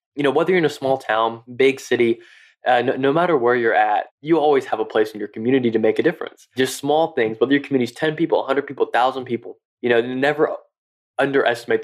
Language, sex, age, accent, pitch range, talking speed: English, male, 20-39, American, 115-160 Hz, 230 wpm